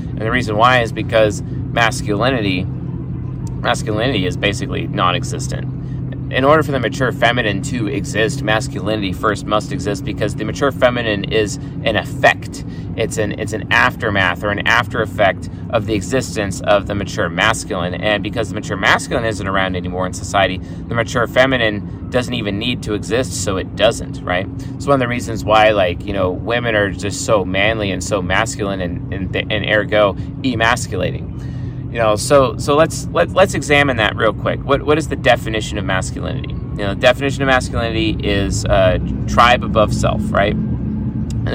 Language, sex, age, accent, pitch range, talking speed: English, male, 30-49, American, 105-135 Hz, 175 wpm